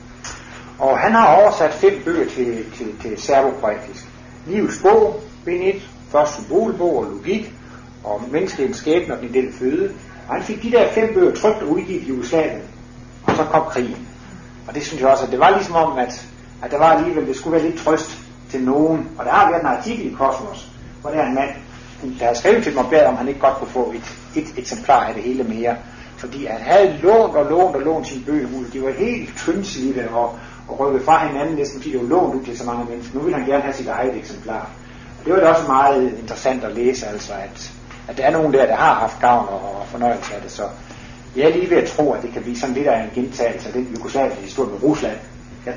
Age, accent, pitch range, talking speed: 60-79, native, 120-155 Hz, 225 wpm